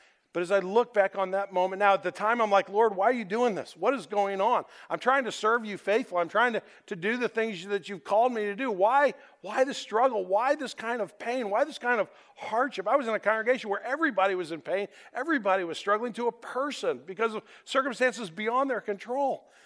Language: English